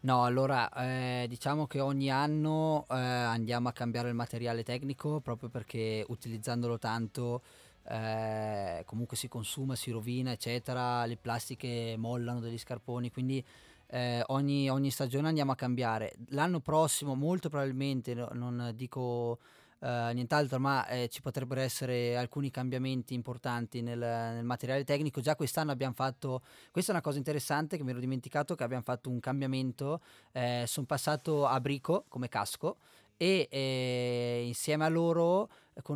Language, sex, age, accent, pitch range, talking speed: Italian, male, 20-39, native, 120-135 Hz, 145 wpm